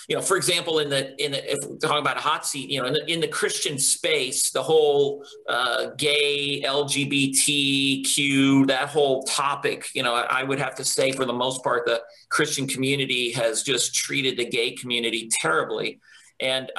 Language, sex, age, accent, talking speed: English, male, 40-59, American, 180 wpm